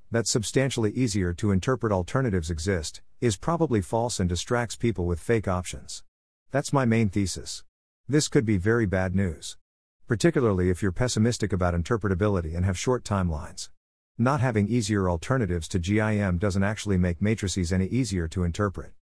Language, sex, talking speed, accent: English, male, 155 wpm, American